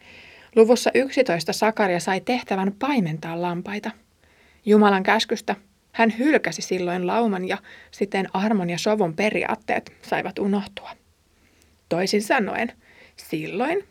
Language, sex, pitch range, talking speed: Finnish, female, 180-230 Hz, 105 wpm